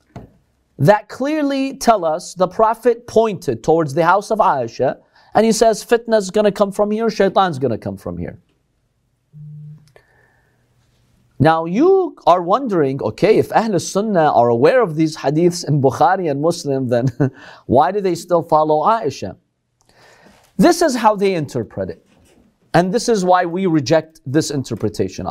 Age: 40-59